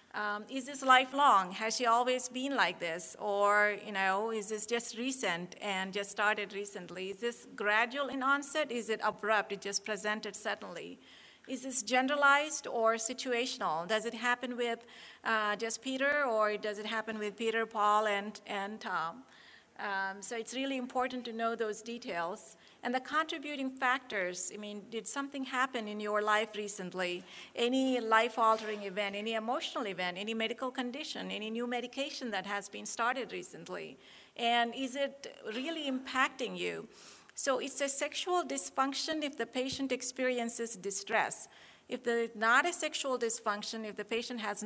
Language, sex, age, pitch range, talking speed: English, female, 50-69, 210-255 Hz, 165 wpm